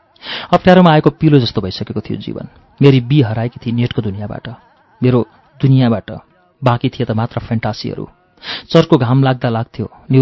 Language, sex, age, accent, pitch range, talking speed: English, male, 40-59, Indian, 115-140 Hz, 135 wpm